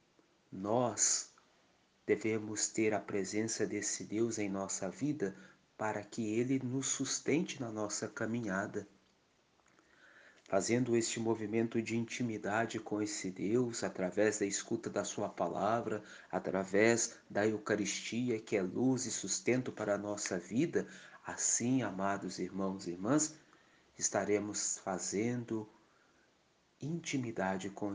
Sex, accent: male, Brazilian